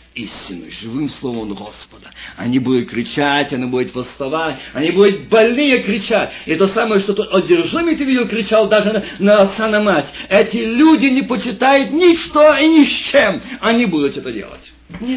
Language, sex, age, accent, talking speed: Russian, male, 50-69, native, 170 wpm